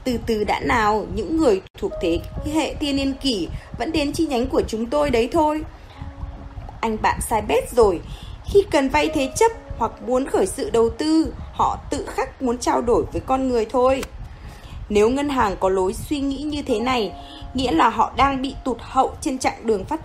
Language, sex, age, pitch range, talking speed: Vietnamese, female, 20-39, 245-320 Hz, 205 wpm